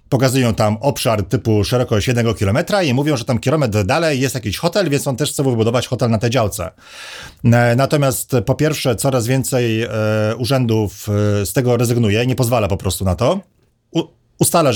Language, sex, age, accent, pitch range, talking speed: Polish, male, 40-59, native, 100-130 Hz, 170 wpm